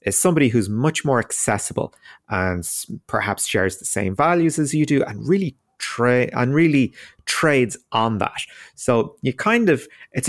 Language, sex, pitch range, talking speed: English, male, 100-140 Hz, 165 wpm